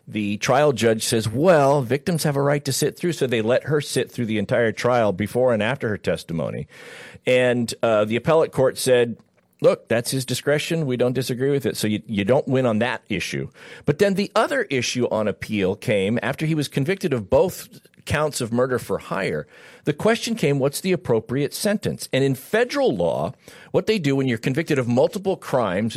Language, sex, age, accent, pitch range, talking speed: English, male, 50-69, American, 120-160 Hz, 205 wpm